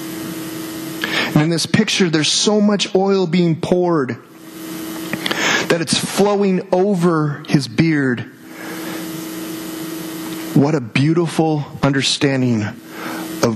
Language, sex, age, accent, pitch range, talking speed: English, male, 40-59, American, 145-165 Hz, 90 wpm